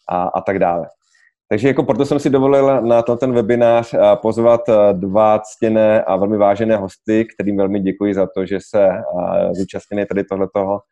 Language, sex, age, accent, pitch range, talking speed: Czech, male, 20-39, native, 100-110 Hz, 165 wpm